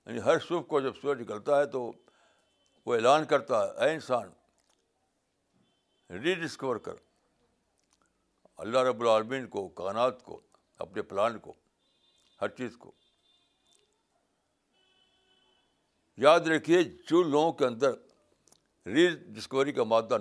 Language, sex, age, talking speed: Urdu, male, 60-79, 120 wpm